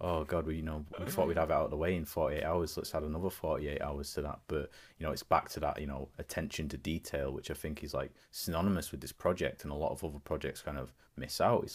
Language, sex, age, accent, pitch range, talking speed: English, male, 20-39, British, 75-90 Hz, 300 wpm